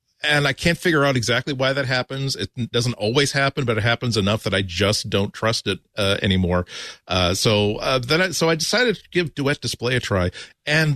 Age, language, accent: 40-59, English, American